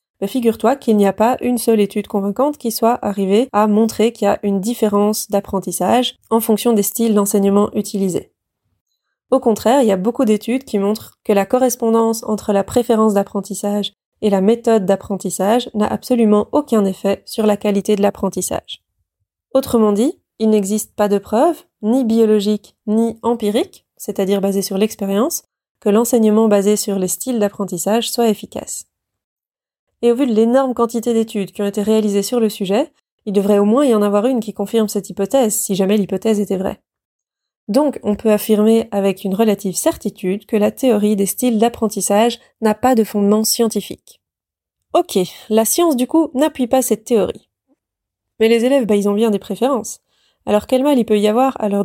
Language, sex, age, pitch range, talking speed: French, female, 20-39, 205-235 Hz, 180 wpm